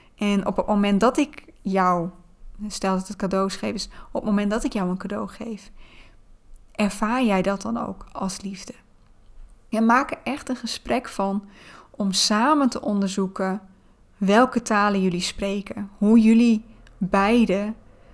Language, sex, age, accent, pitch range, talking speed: Dutch, female, 20-39, Dutch, 190-225 Hz, 155 wpm